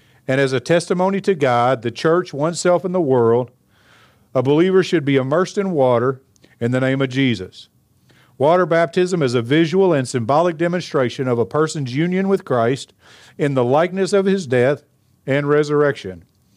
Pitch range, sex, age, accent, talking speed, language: 115-155 Hz, male, 50-69, American, 165 wpm, English